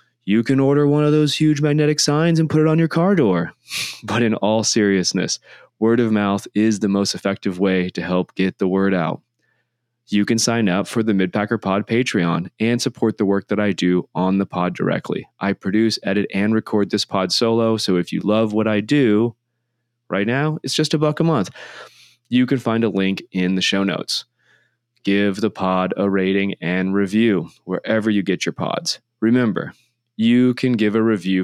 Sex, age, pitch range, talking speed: male, 20-39, 95-115 Hz, 200 wpm